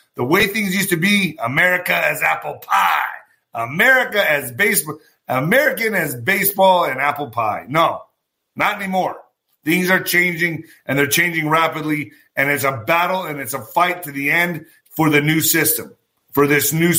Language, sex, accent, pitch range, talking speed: English, male, American, 155-200 Hz, 165 wpm